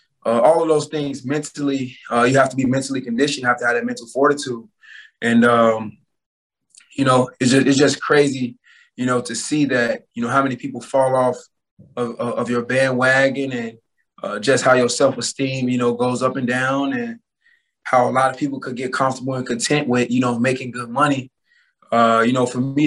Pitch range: 120-135 Hz